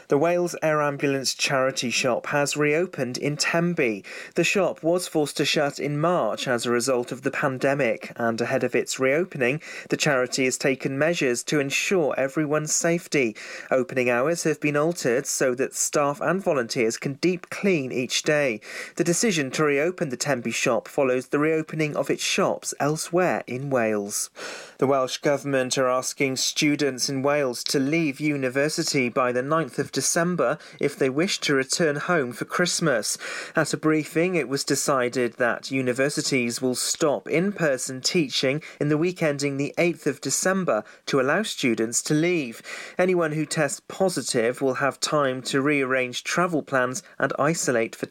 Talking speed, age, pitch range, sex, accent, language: 165 wpm, 30-49, 130-165 Hz, male, British, English